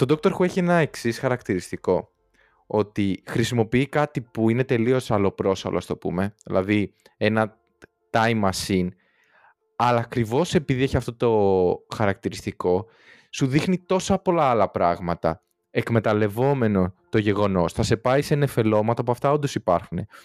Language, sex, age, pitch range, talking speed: Greek, male, 20-39, 105-135 Hz, 140 wpm